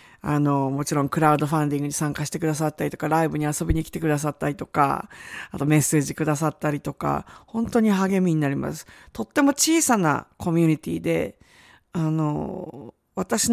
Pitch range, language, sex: 155-230 Hz, Japanese, female